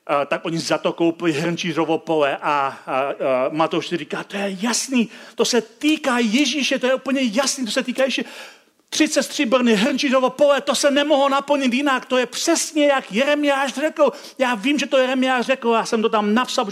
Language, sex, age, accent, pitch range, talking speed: Czech, male, 40-59, native, 170-265 Hz, 195 wpm